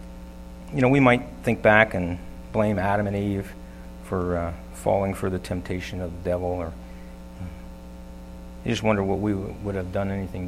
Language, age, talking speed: English, 50-69, 185 wpm